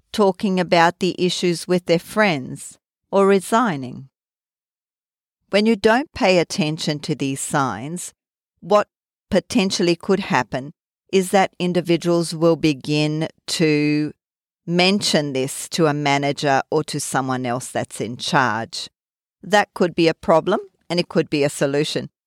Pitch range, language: 140-180 Hz, English